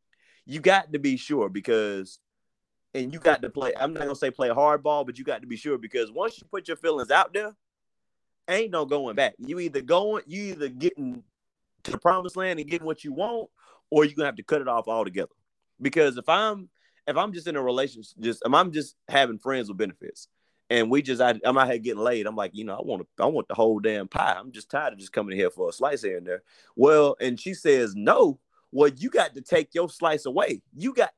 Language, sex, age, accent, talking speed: English, male, 30-49, American, 240 wpm